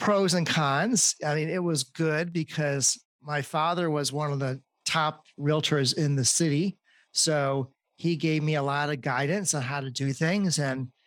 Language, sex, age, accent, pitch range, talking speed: English, male, 40-59, American, 140-165 Hz, 185 wpm